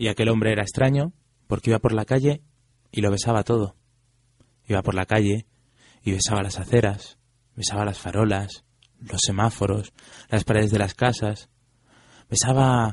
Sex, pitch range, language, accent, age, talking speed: male, 100-120 Hz, Spanish, Spanish, 20-39, 155 wpm